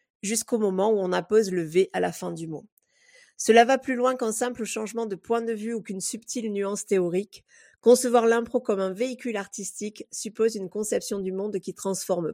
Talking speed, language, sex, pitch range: 200 wpm, French, female, 190-230 Hz